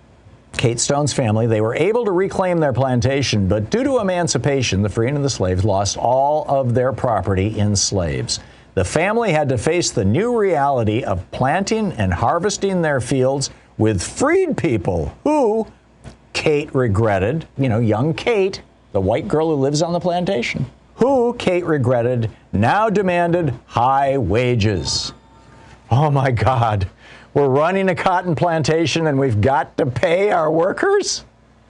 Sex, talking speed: male, 150 wpm